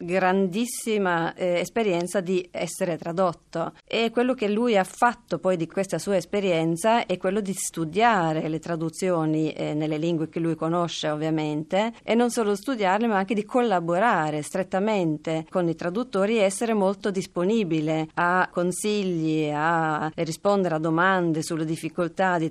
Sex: female